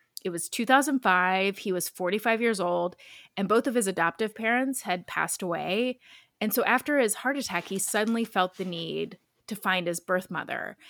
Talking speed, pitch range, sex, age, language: 180 wpm, 180-225 Hz, female, 20-39, English